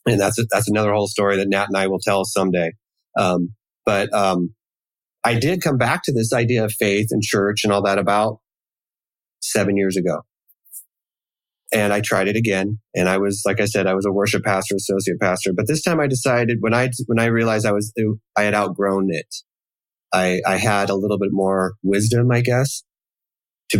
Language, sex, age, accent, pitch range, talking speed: English, male, 30-49, American, 100-115 Hz, 200 wpm